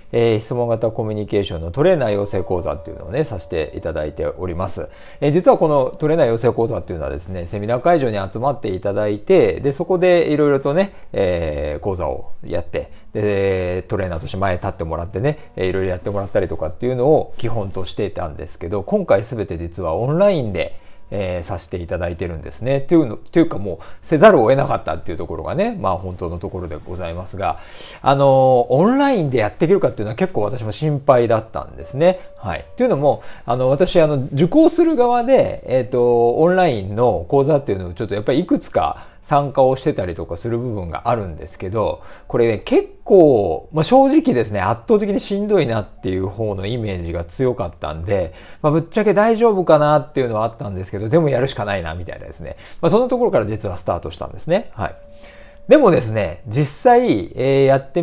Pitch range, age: 95-150 Hz, 40-59